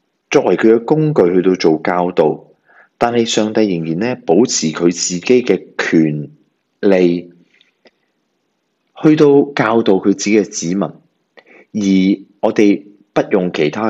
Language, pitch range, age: Chinese, 85-115 Hz, 30-49